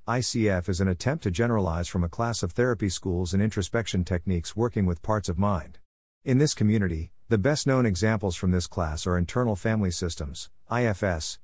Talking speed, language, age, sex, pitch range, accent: 185 wpm, English, 50-69, male, 90-115 Hz, American